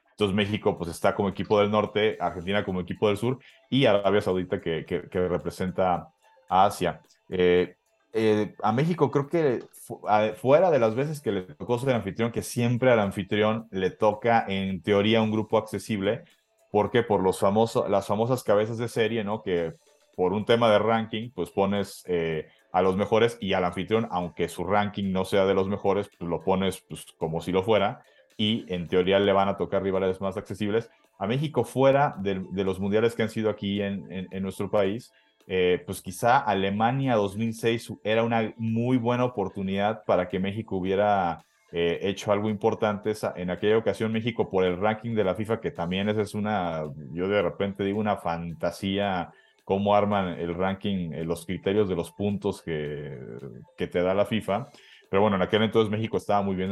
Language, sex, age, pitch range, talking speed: Spanish, male, 30-49, 95-110 Hz, 190 wpm